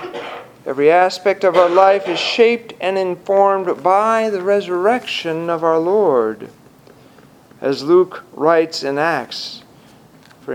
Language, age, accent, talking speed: English, 50-69, American, 120 wpm